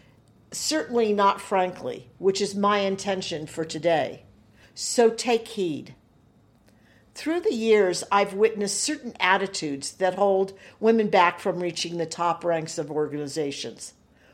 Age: 50-69